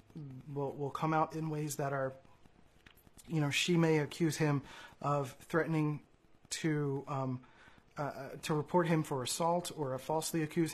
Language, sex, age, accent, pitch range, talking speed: English, male, 30-49, American, 140-165 Hz, 155 wpm